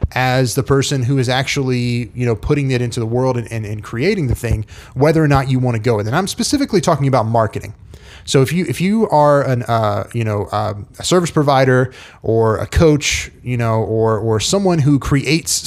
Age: 30-49